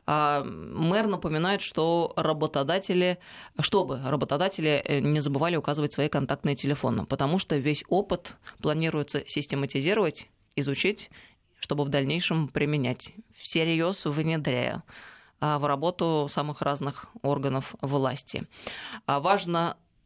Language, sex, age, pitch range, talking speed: Russian, female, 20-39, 150-200 Hz, 95 wpm